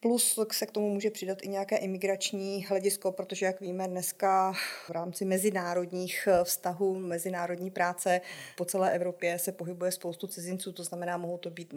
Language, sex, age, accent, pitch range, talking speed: Czech, female, 30-49, native, 175-190 Hz, 165 wpm